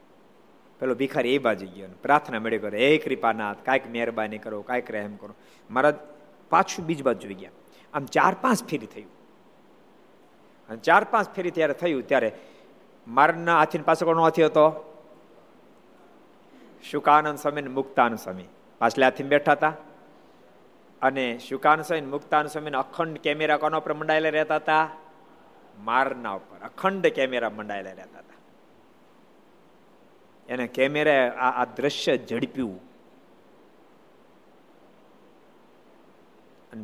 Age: 50-69